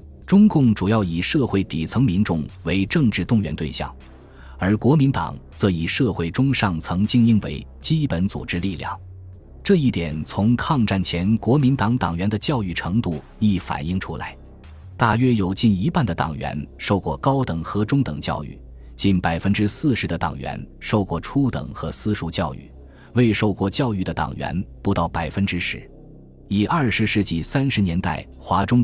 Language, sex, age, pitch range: Chinese, male, 20-39, 80-110 Hz